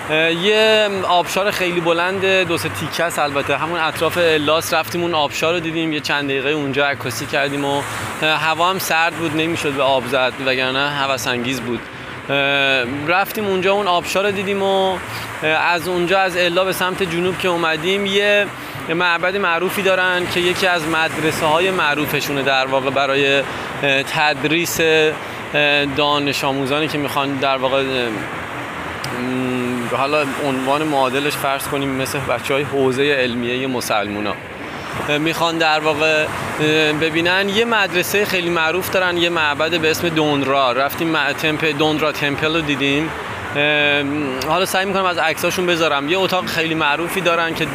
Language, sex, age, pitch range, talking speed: Persian, male, 20-39, 140-170 Hz, 140 wpm